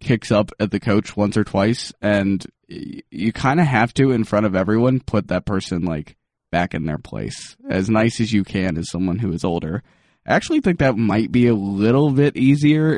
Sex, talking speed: male, 215 wpm